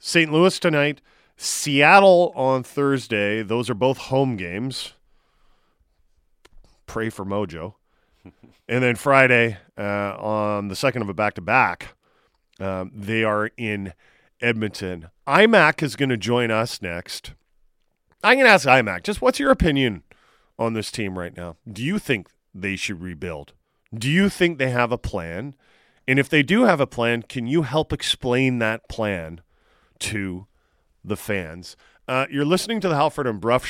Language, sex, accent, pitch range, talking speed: English, male, American, 105-145 Hz, 155 wpm